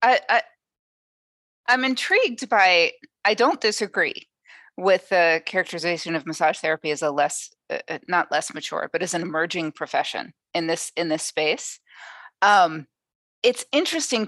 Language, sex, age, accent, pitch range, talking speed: English, female, 40-59, American, 160-235 Hz, 145 wpm